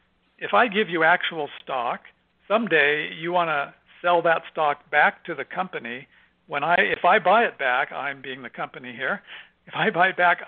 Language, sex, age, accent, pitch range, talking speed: English, male, 60-79, American, 150-175 Hz, 195 wpm